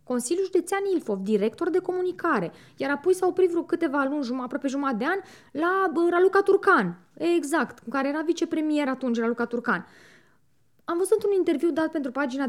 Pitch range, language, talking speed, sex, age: 235-350 Hz, Romanian, 180 wpm, female, 20-39